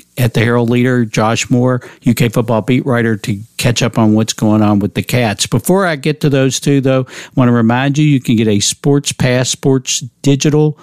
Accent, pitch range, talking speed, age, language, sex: American, 110-135 Hz, 220 wpm, 50-69, English, male